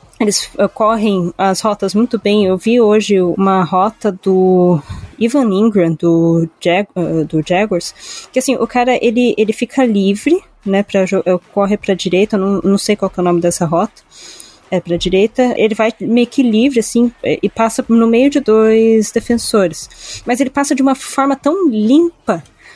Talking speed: 175 wpm